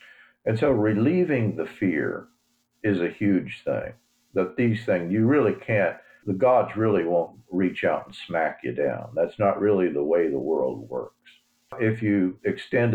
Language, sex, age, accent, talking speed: English, male, 50-69, American, 165 wpm